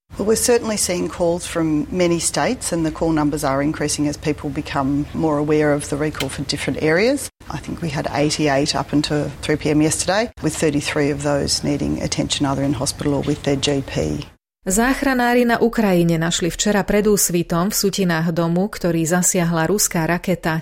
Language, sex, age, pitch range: Slovak, female, 30-49, 155-195 Hz